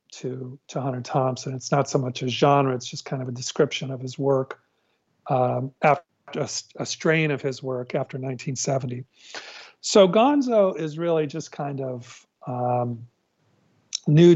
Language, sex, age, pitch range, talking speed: English, male, 50-69, 130-150 Hz, 160 wpm